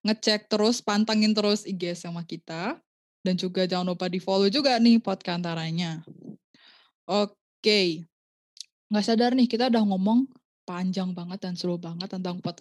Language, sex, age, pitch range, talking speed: Indonesian, female, 20-39, 185-230 Hz, 150 wpm